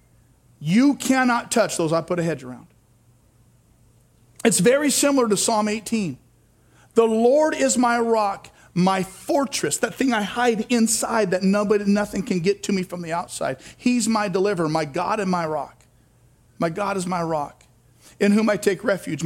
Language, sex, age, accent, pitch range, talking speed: English, male, 40-59, American, 130-205 Hz, 170 wpm